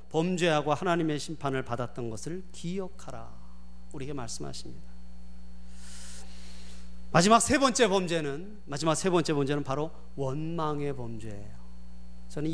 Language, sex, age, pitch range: Korean, male, 40-59, 115-190 Hz